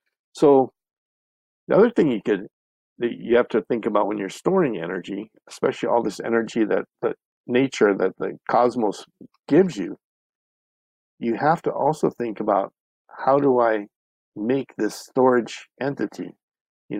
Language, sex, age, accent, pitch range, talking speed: English, male, 50-69, American, 100-120 Hz, 150 wpm